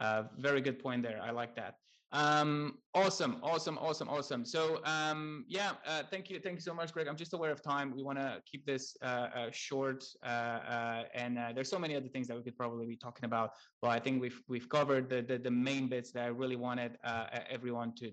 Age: 20-39